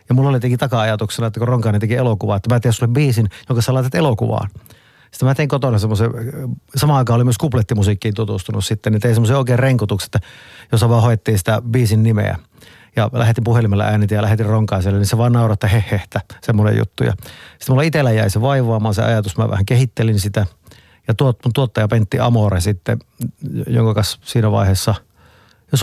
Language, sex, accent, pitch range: Finnish, male, native, 110-130 Hz